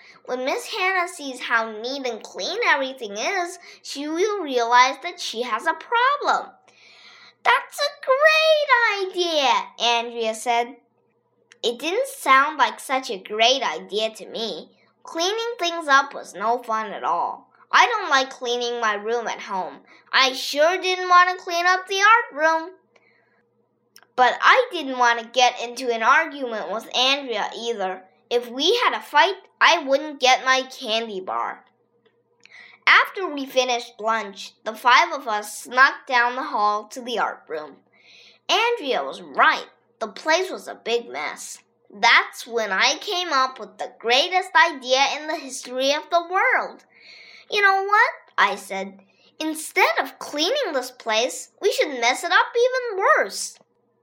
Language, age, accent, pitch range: Chinese, 20-39, American, 235-360 Hz